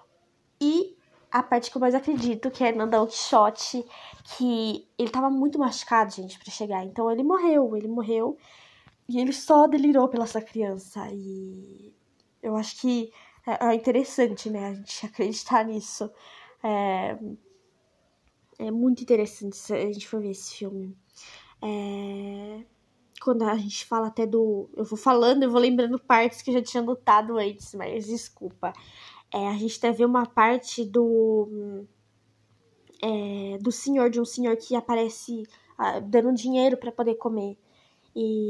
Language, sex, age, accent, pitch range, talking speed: Portuguese, female, 10-29, Brazilian, 210-255 Hz, 150 wpm